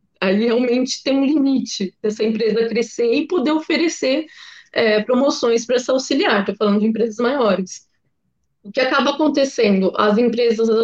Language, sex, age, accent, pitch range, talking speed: Portuguese, female, 20-39, Brazilian, 210-280 Hz, 145 wpm